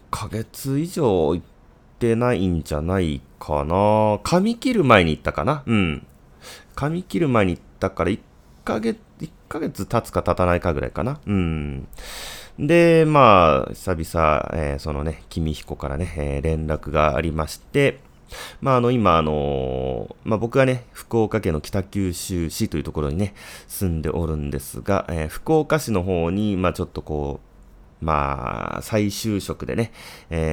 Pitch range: 75-110 Hz